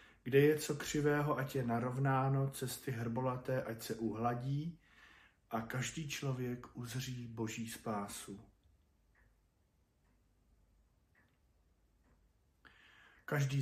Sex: male